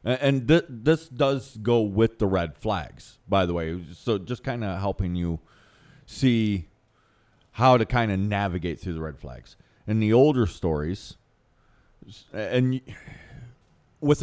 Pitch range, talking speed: 85-115 Hz, 150 wpm